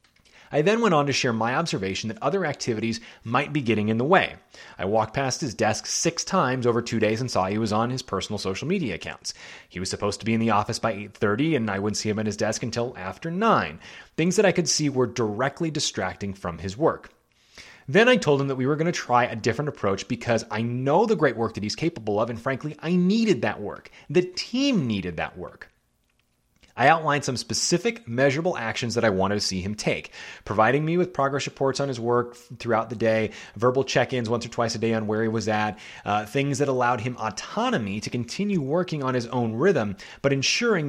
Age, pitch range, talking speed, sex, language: 30-49, 110-150 Hz, 225 wpm, male, English